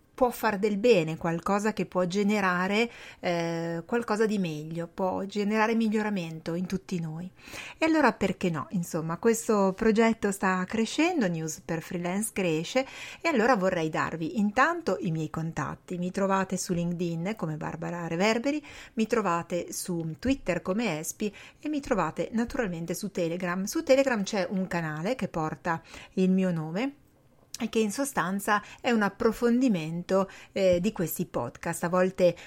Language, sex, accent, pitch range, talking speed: Italian, female, native, 170-220 Hz, 150 wpm